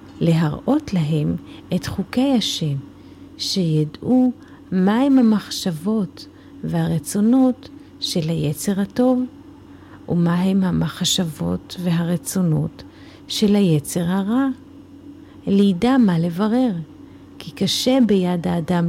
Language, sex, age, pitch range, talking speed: Hebrew, female, 40-59, 170-240 Hz, 80 wpm